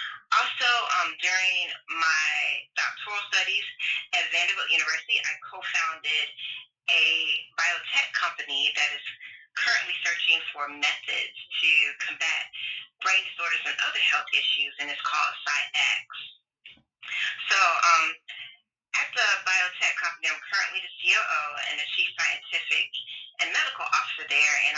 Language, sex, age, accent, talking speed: English, female, 30-49, American, 115 wpm